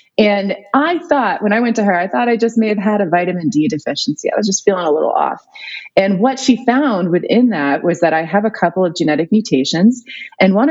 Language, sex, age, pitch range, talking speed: English, female, 30-49, 170-230 Hz, 240 wpm